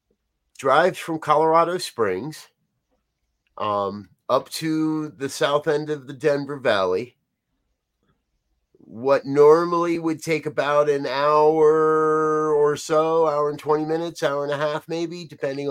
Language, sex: English, male